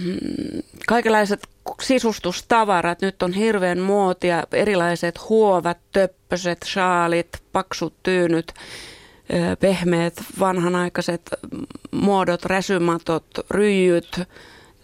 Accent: native